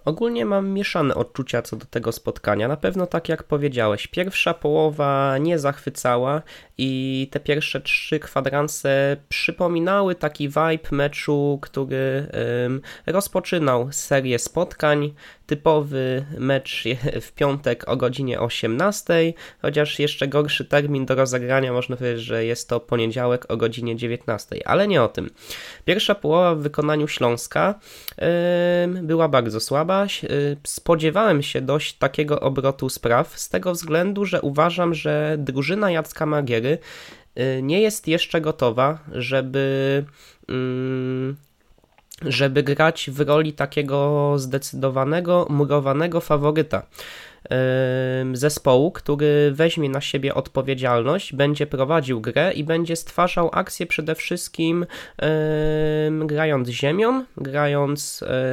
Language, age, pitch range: Polish, 20-39, 130-160 Hz